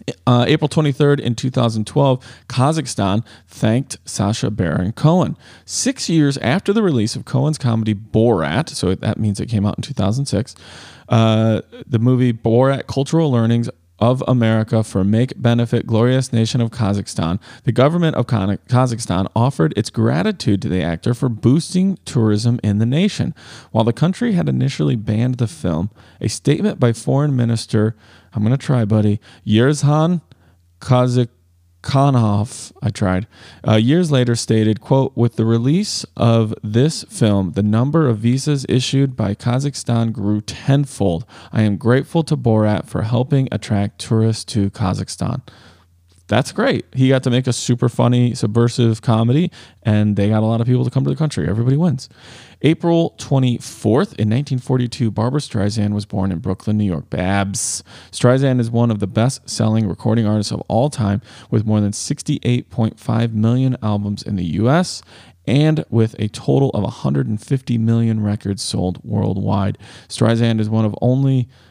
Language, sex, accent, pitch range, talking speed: English, male, American, 105-130 Hz, 155 wpm